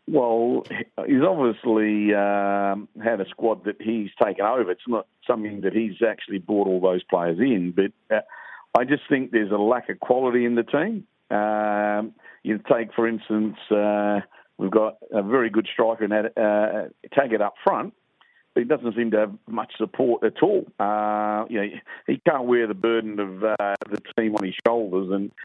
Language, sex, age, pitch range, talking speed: English, male, 50-69, 105-115 Hz, 185 wpm